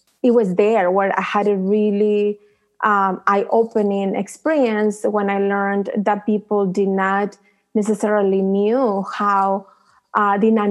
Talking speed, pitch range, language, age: 135 wpm, 200-225 Hz, English, 20-39